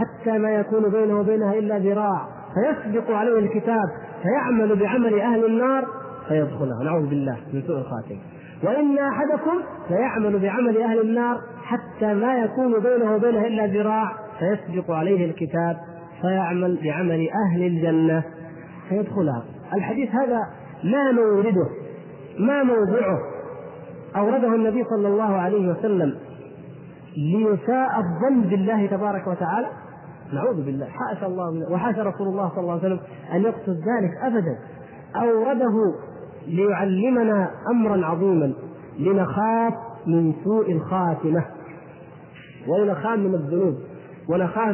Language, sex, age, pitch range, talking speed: Arabic, male, 40-59, 175-230 Hz, 115 wpm